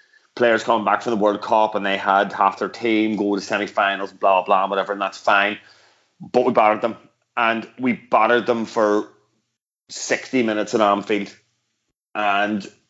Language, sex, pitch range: English, male, 105-150 Hz